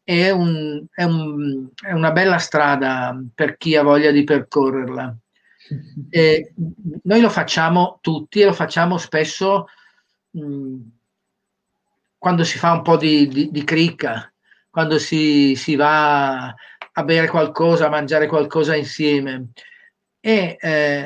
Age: 40-59